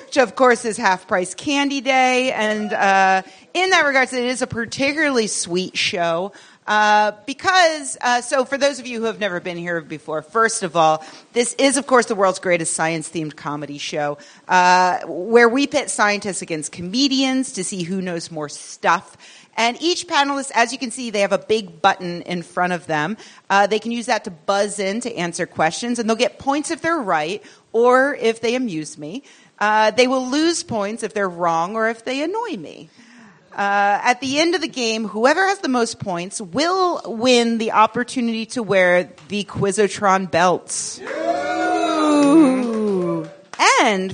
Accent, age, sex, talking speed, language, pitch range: American, 40-59, female, 180 wpm, English, 185-270 Hz